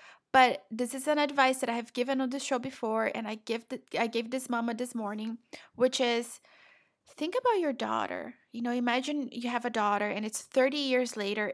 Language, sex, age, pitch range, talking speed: English, female, 20-39, 230-265 Hz, 215 wpm